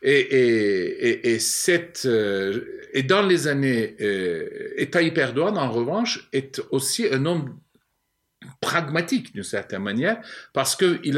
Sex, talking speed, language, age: male, 100 wpm, French, 60-79